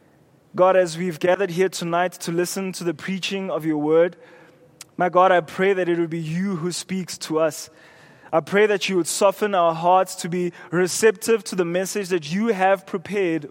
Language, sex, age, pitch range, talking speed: English, male, 20-39, 170-210 Hz, 200 wpm